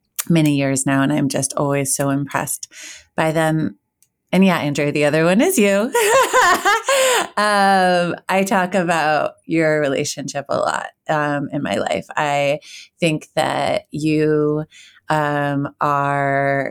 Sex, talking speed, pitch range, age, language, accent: female, 135 wpm, 145-170 Hz, 30-49, English, American